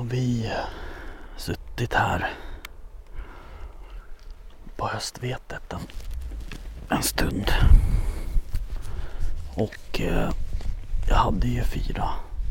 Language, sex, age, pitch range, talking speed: Swedish, male, 40-59, 90-120 Hz, 75 wpm